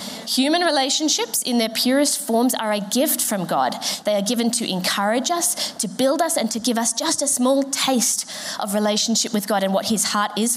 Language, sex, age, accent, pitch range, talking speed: English, female, 20-39, Australian, 195-250 Hz, 210 wpm